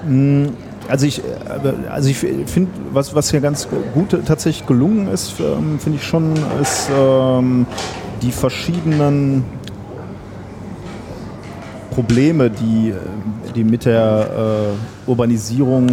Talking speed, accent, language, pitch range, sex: 100 wpm, German, German, 105-130 Hz, male